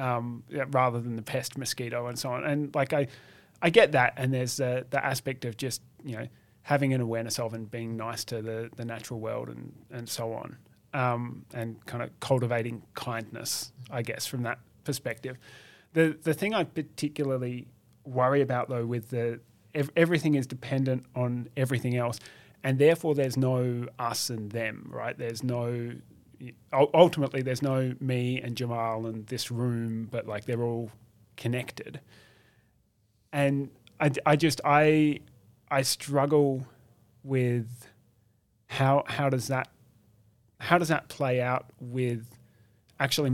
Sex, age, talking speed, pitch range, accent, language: male, 30-49, 155 wpm, 115-135 Hz, Australian, English